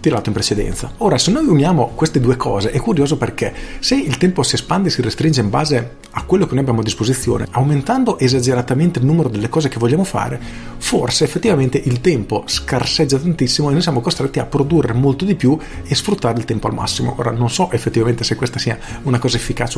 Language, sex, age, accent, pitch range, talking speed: Italian, male, 40-59, native, 115-145 Hz, 210 wpm